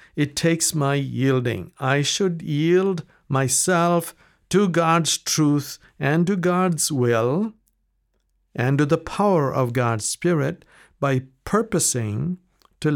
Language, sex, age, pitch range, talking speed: English, male, 60-79, 130-165 Hz, 115 wpm